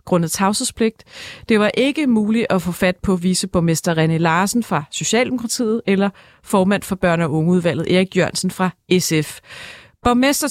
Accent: native